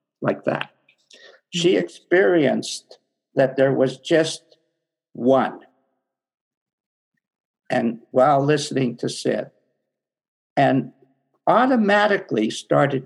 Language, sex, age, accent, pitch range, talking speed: English, male, 60-79, American, 130-165 Hz, 80 wpm